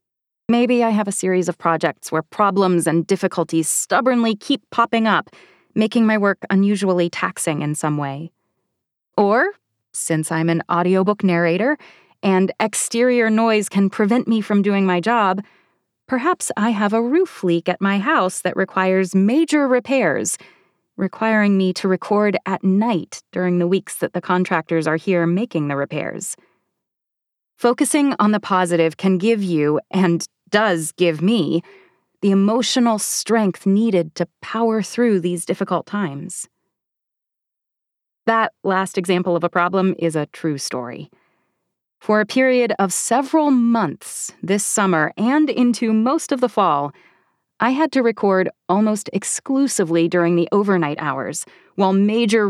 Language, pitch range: English, 175-225 Hz